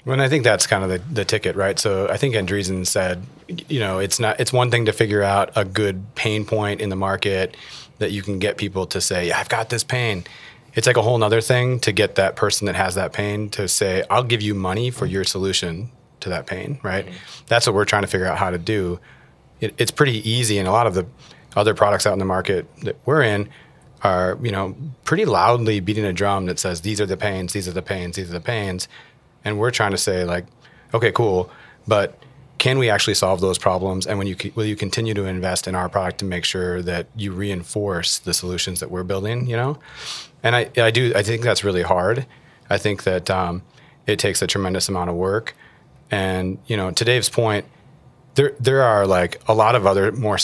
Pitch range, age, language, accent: 95-120 Hz, 30-49, English, American